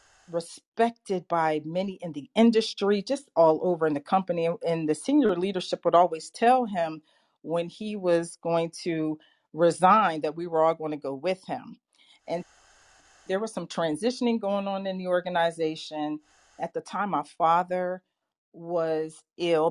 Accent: American